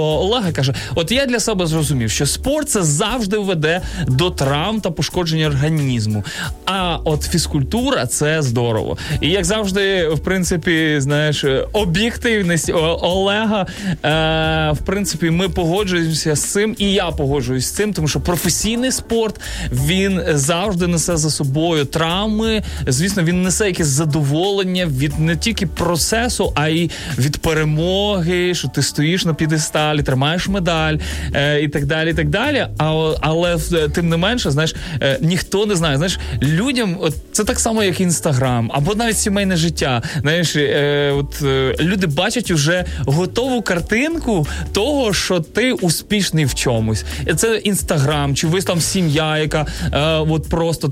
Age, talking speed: 20-39, 150 wpm